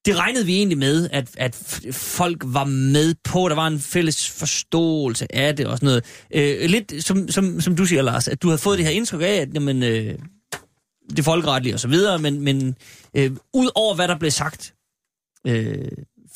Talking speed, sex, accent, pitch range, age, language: 200 wpm, male, native, 130-180 Hz, 30-49, Danish